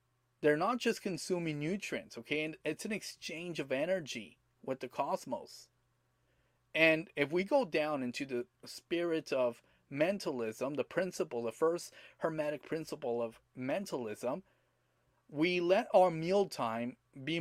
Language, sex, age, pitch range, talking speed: English, male, 30-49, 130-180 Hz, 135 wpm